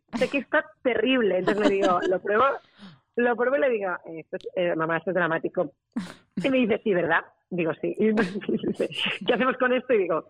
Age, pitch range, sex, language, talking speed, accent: 30-49, 170-215 Hz, female, Spanish, 210 wpm, Spanish